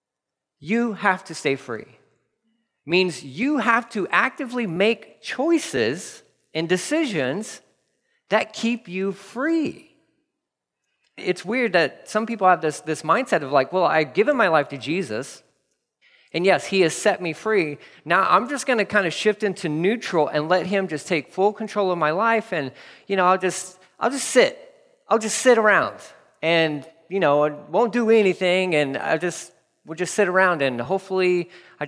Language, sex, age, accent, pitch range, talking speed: English, male, 40-59, American, 160-230 Hz, 175 wpm